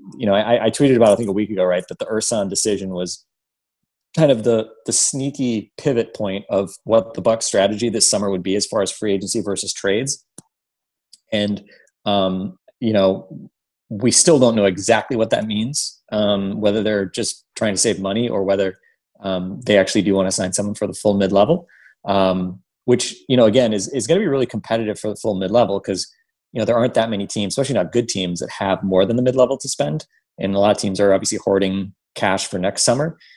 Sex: male